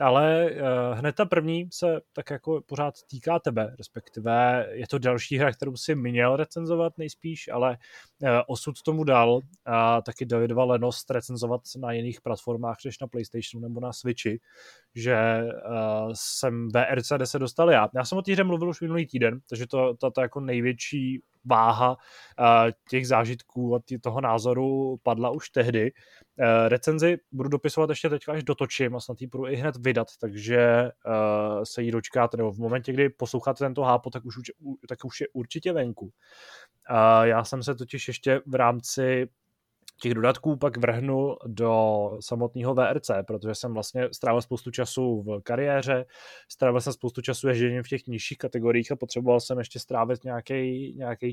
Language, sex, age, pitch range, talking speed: Czech, male, 20-39, 120-140 Hz, 160 wpm